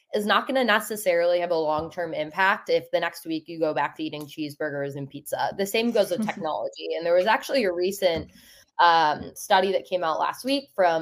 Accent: American